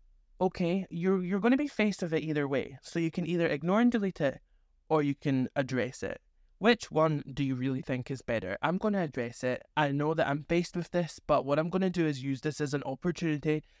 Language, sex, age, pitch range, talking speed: English, male, 20-39, 130-175 Hz, 245 wpm